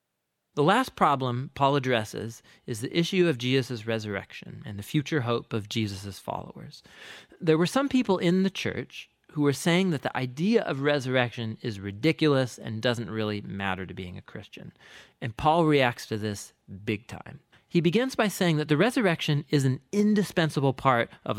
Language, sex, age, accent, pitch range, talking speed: English, male, 40-59, American, 120-165 Hz, 175 wpm